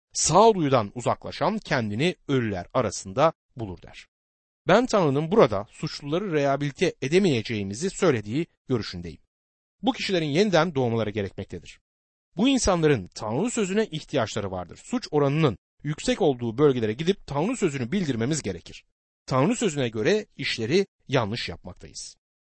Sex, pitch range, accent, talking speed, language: male, 115-190 Hz, native, 110 wpm, Turkish